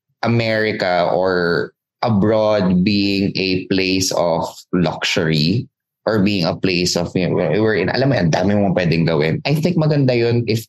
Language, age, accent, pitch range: Filipino, 20-39, native, 85-120 Hz